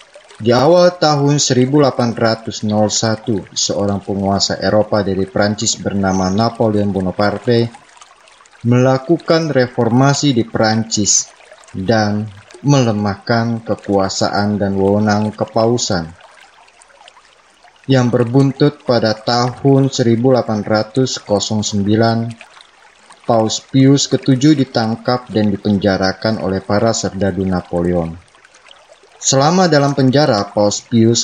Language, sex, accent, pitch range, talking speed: Indonesian, male, native, 100-125 Hz, 80 wpm